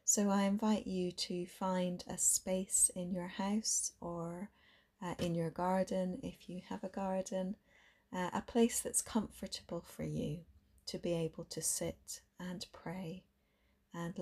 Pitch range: 170-195 Hz